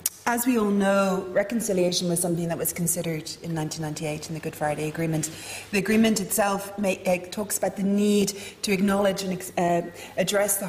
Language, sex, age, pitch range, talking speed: English, female, 30-49, 160-190 Hz, 165 wpm